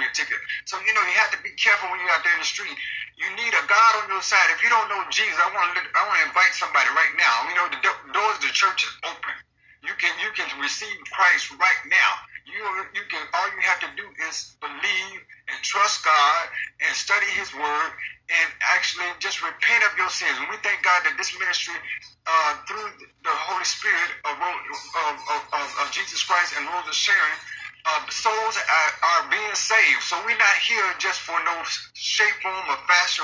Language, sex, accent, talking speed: English, male, American, 215 wpm